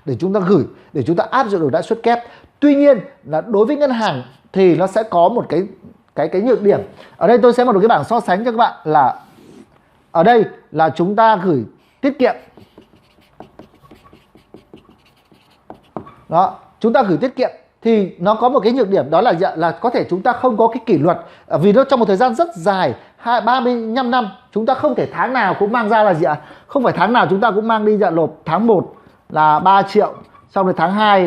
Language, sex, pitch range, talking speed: Vietnamese, male, 180-245 Hz, 225 wpm